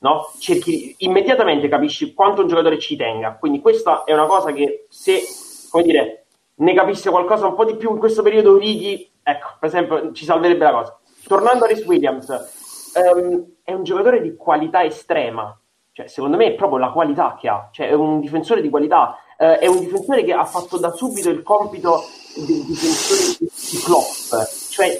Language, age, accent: Italian, 30-49, native